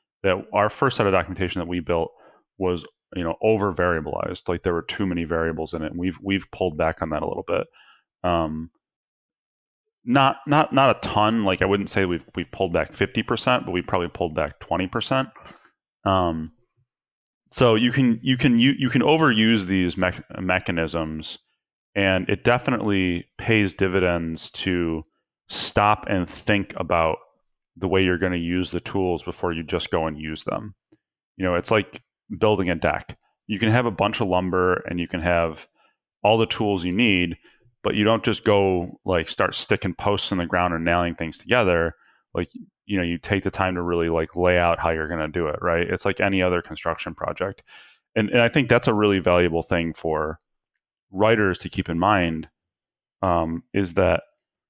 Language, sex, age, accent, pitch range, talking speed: English, male, 30-49, American, 85-105 Hz, 190 wpm